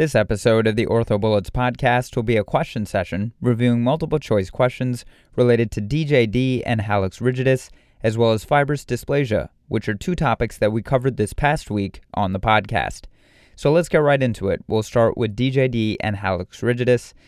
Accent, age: American, 30-49